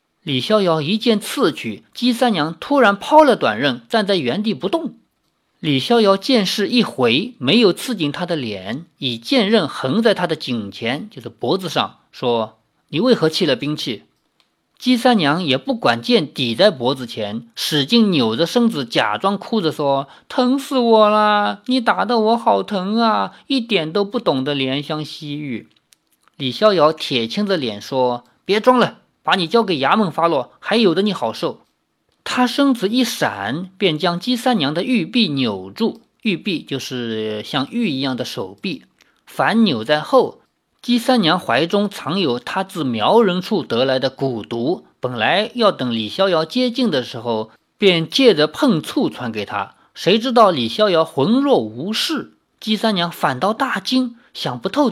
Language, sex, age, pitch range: Chinese, male, 50-69, 145-235 Hz